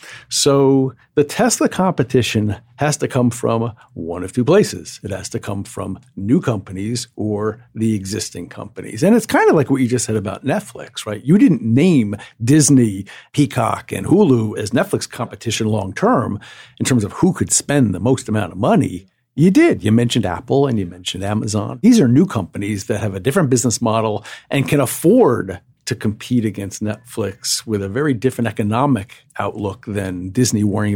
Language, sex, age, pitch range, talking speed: English, male, 50-69, 105-135 Hz, 180 wpm